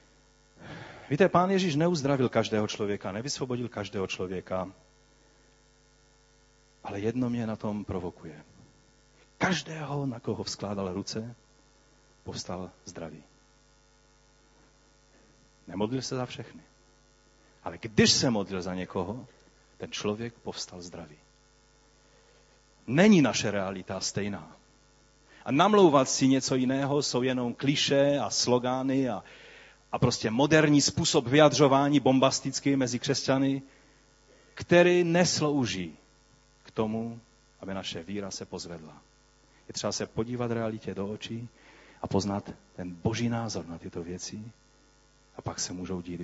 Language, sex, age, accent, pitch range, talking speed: Czech, male, 40-59, native, 100-145 Hz, 115 wpm